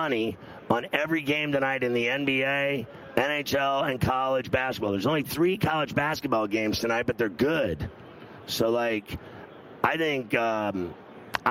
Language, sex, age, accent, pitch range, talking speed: English, male, 30-49, American, 115-140 Hz, 135 wpm